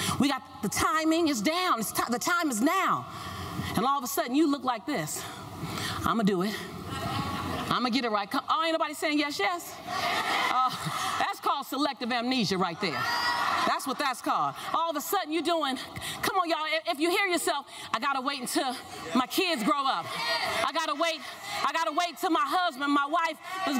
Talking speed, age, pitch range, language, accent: 215 wpm, 40-59, 270-370 Hz, English, American